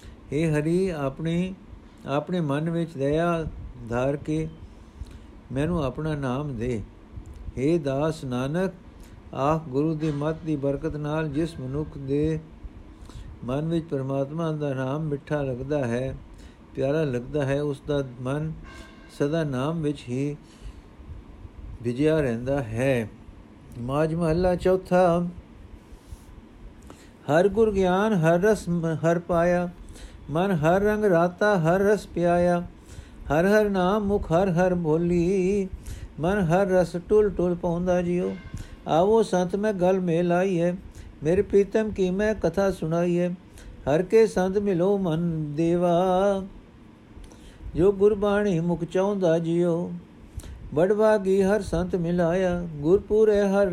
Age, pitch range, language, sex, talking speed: 60-79, 135-185 Hz, Punjabi, male, 120 wpm